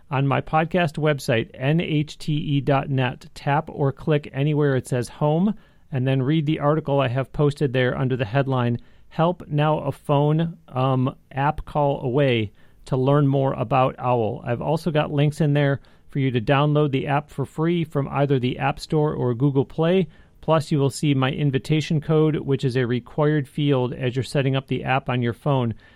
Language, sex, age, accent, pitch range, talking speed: English, male, 40-59, American, 130-155 Hz, 185 wpm